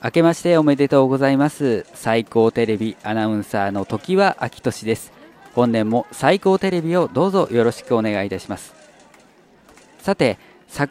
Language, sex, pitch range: Japanese, male, 110-160 Hz